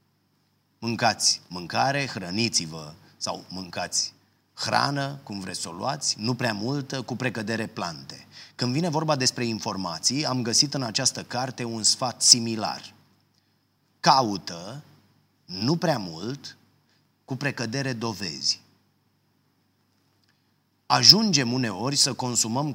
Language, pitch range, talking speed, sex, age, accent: Romanian, 110-140 Hz, 110 wpm, male, 30-49, native